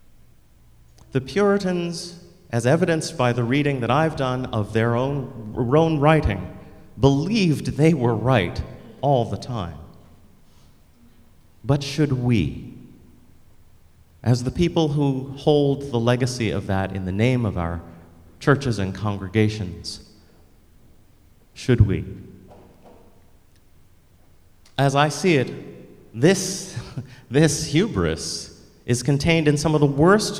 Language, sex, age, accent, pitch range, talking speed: English, male, 30-49, American, 95-135 Hz, 115 wpm